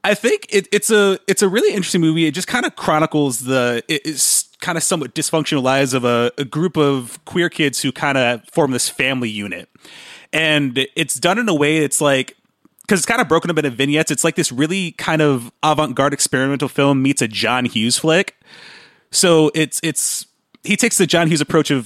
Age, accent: 30-49, American